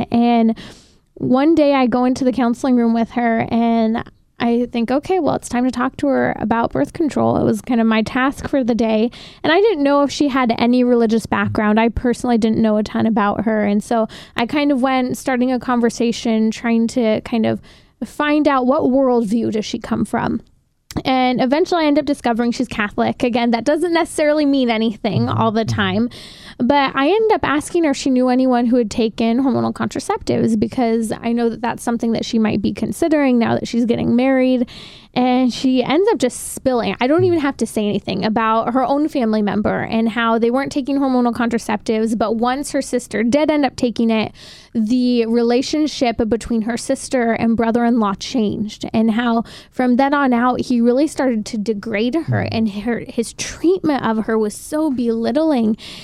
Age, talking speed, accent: 20-39, 195 wpm, American